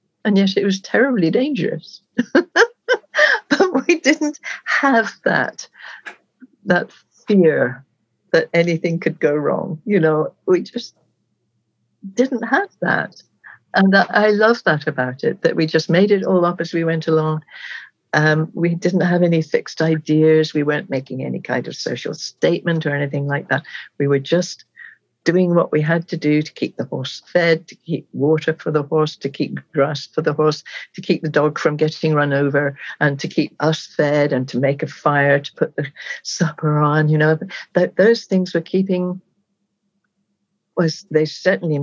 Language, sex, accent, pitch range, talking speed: English, female, British, 150-195 Hz, 170 wpm